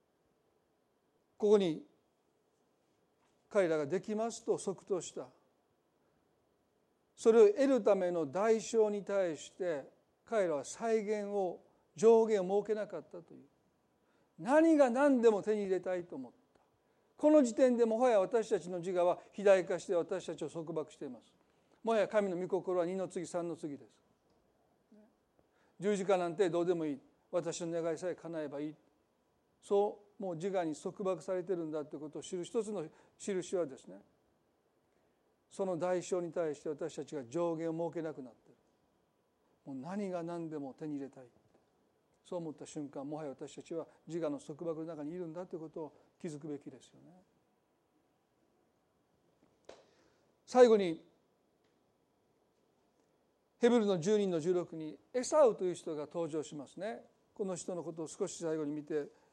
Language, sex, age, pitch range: Japanese, male, 40-59, 160-205 Hz